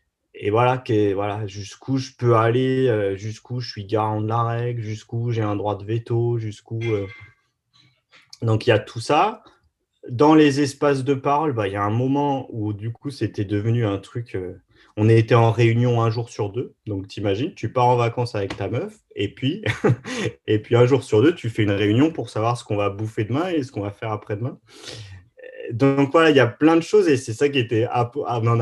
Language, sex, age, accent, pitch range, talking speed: French, male, 30-49, French, 105-125 Hz, 210 wpm